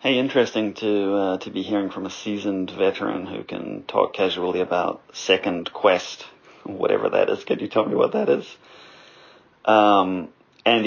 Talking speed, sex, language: 165 wpm, male, English